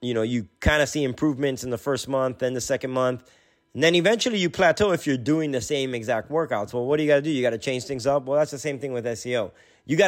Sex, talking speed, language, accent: male, 290 wpm, English, American